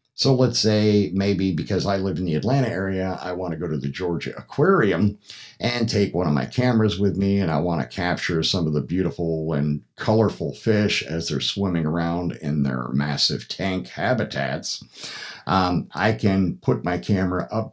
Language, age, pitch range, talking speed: English, 50-69, 75-100 Hz, 185 wpm